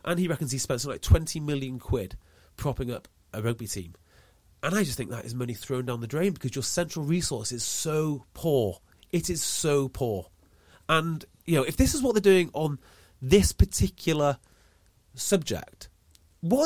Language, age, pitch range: English, 30-49, 105-170 Hz